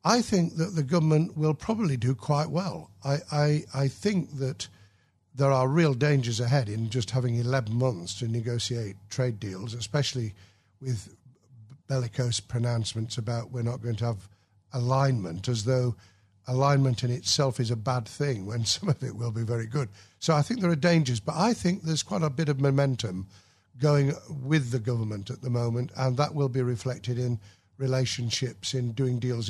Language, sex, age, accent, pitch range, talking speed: English, male, 50-69, British, 110-140 Hz, 180 wpm